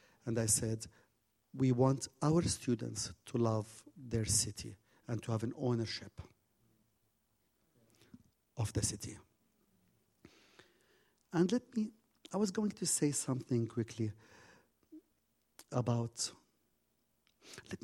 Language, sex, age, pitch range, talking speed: English, male, 50-69, 110-140 Hz, 105 wpm